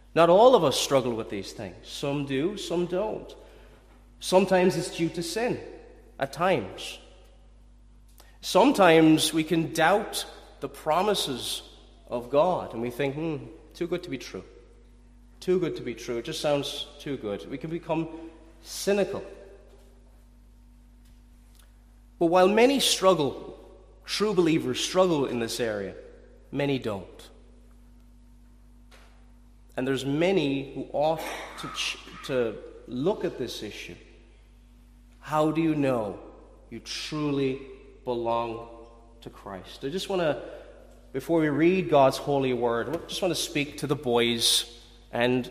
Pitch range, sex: 120-165 Hz, male